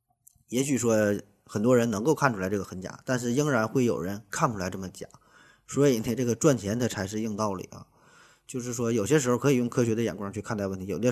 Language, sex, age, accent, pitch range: Chinese, male, 20-39, native, 100-120 Hz